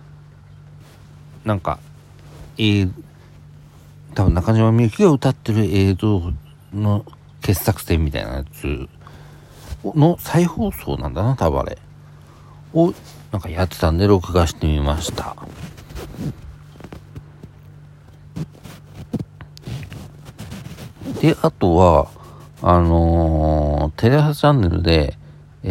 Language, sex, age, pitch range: Japanese, male, 60-79, 80-125 Hz